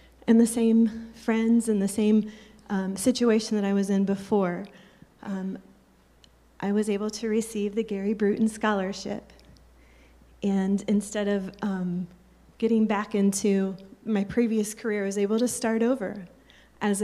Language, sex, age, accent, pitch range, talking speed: English, female, 30-49, American, 200-230 Hz, 145 wpm